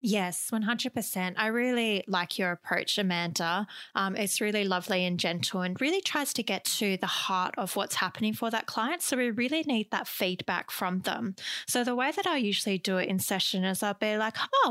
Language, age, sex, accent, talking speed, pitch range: English, 20-39, female, Australian, 215 wpm, 190-245 Hz